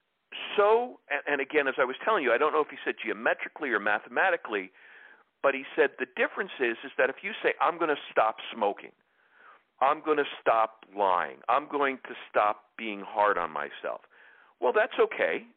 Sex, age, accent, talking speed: male, 50-69, American, 190 wpm